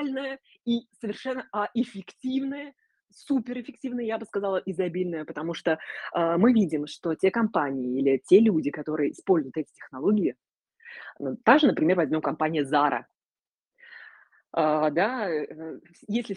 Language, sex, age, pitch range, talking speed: Russian, female, 20-39, 160-215 Hz, 110 wpm